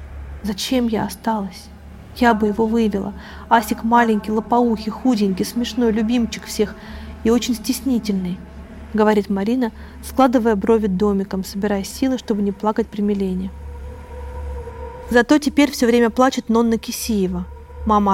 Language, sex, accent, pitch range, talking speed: Russian, female, native, 200-240 Hz, 120 wpm